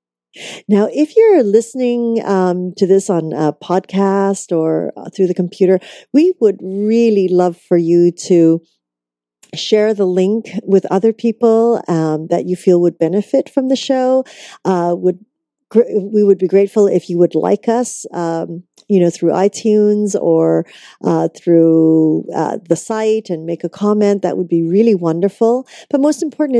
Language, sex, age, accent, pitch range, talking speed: English, female, 40-59, American, 170-220 Hz, 160 wpm